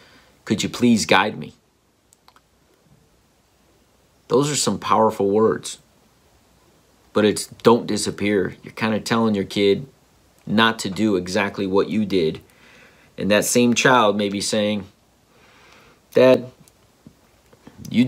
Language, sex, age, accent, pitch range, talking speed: English, male, 40-59, American, 100-120 Hz, 120 wpm